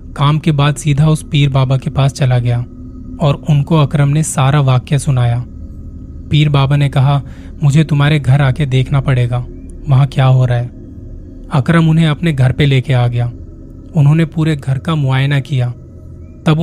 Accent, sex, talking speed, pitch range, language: native, male, 175 wpm, 120-150 Hz, Hindi